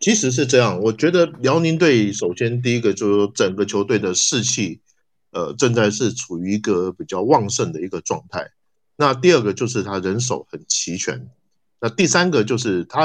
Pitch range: 100-130 Hz